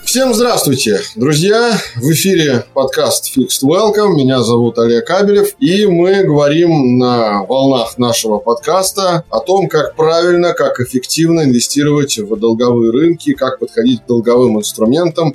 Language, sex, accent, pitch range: Russian, male, native, 120-160 Hz